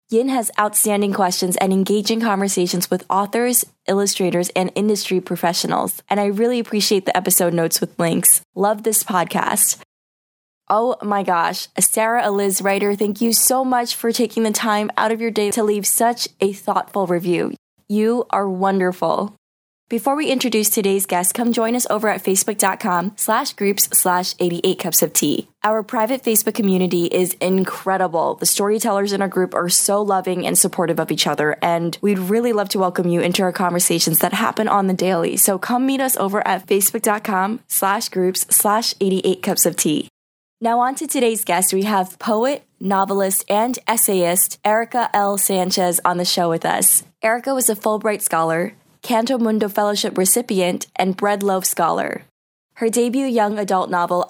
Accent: American